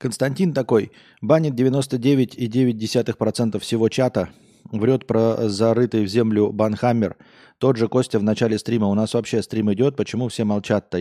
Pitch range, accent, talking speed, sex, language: 105-125 Hz, native, 140 wpm, male, Russian